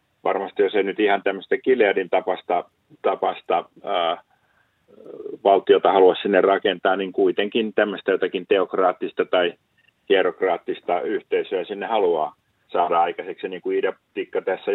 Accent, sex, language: native, male, Finnish